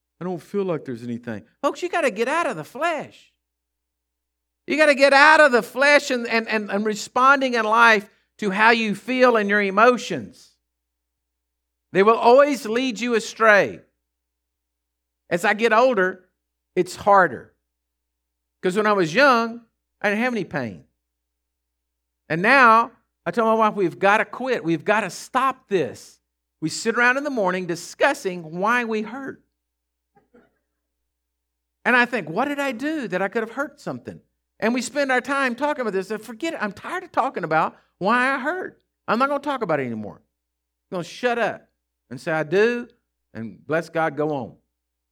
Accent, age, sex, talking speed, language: American, 50-69, male, 185 wpm, English